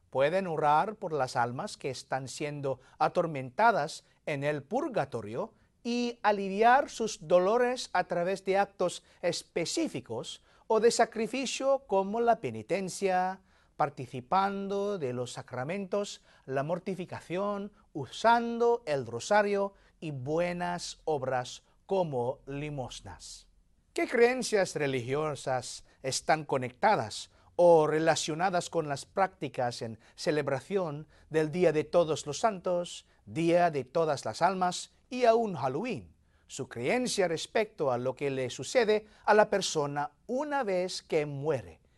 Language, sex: English, male